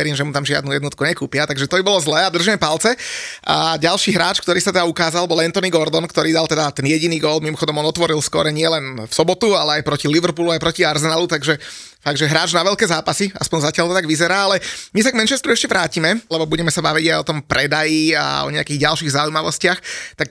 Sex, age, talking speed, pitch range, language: male, 30-49, 225 wpm, 145-170 Hz, Slovak